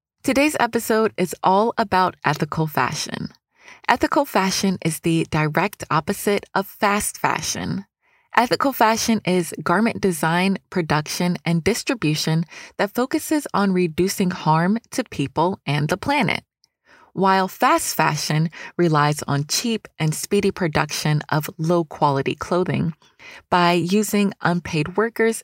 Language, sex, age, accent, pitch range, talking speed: English, female, 20-39, American, 160-210 Hz, 120 wpm